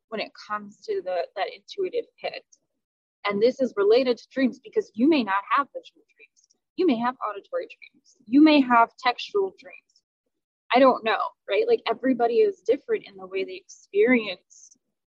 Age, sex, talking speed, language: 20-39, female, 175 wpm, English